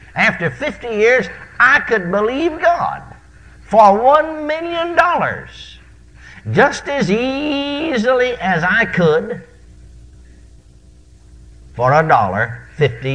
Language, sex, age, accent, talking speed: English, male, 60-79, American, 95 wpm